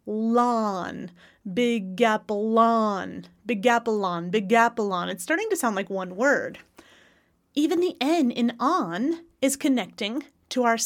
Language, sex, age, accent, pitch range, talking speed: English, female, 30-49, American, 210-270 Hz, 105 wpm